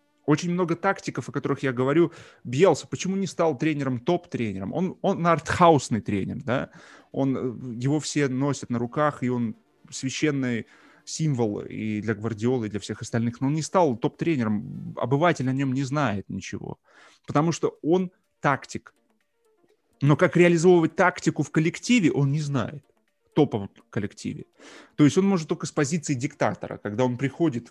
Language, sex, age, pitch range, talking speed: Russian, male, 20-39, 115-160 Hz, 155 wpm